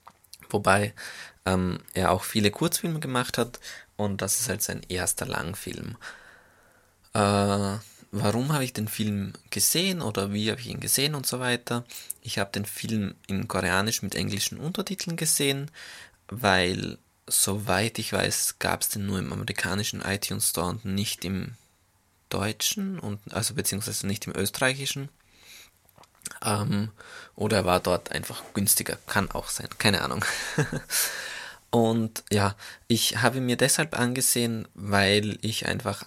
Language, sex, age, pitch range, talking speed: German, male, 20-39, 100-120 Hz, 140 wpm